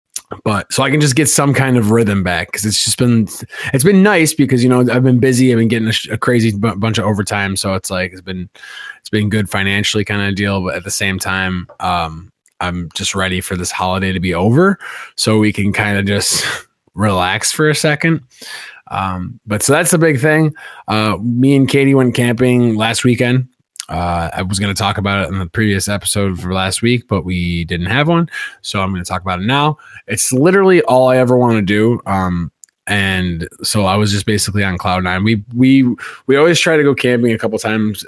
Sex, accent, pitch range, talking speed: male, American, 95-125 Hz, 225 wpm